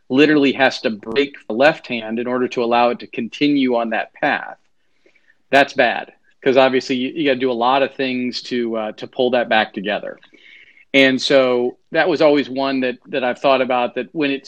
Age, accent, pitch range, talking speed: 40-59, American, 120-140 Hz, 210 wpm